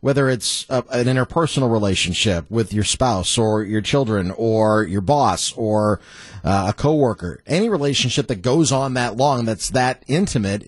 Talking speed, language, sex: 165 wpm, English, male